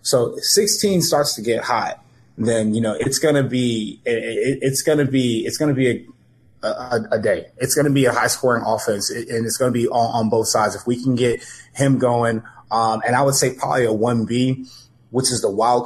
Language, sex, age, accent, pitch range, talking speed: English, male, 20-39, American, 110-130 Hz, 225 wpm